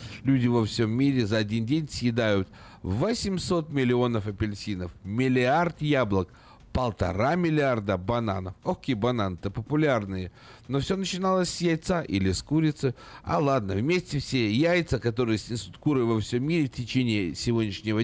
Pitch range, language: 100-135 Hz, Russian